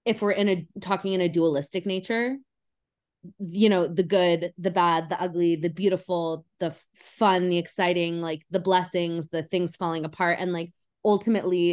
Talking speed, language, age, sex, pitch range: 170 wpm, English, 20-39, female, 175-205 Hz